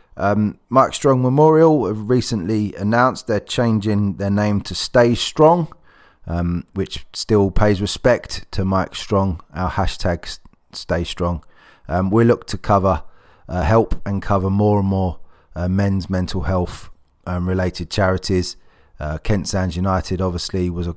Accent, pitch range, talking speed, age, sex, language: British, 90-110 Hz, 150 wpm, 20-39, male, English